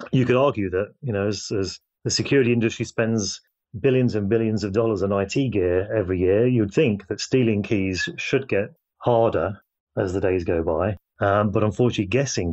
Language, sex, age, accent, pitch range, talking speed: English, male, 30-49, British, 90-110 Hz, 185 wpm